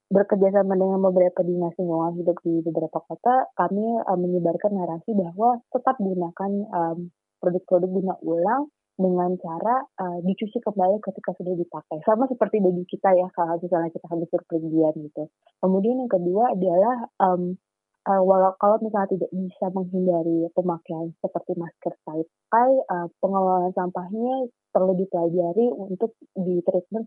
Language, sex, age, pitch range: Indonesian, female, 20-39, 175-200 Hz